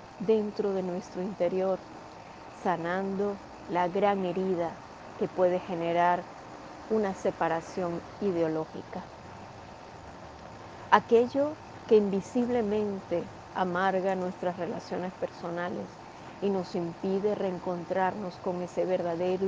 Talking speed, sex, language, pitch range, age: 85 wpm, female, Spanish, 175-195 Hz, 30-49